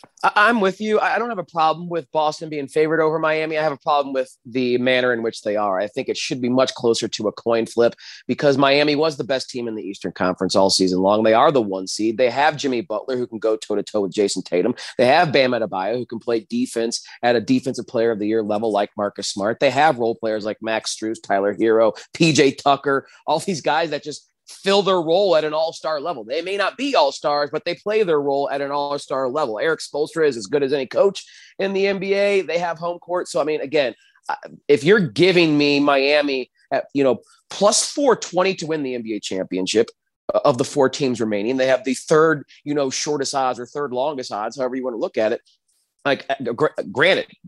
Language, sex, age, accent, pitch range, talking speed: English, male, 30-49, American, 115-165 Hz, 230 wpm